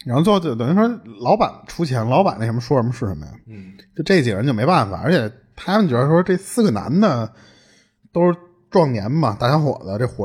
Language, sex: Chinese, male